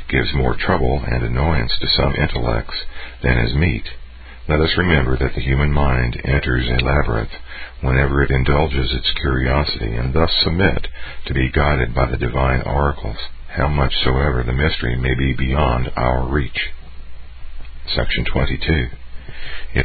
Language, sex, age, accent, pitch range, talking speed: English, male, 50-69, American, 65-75 Hz, 140 wpm